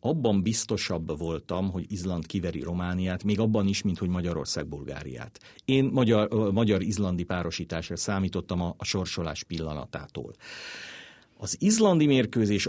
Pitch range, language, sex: 90-115 Hz, Hungarian, male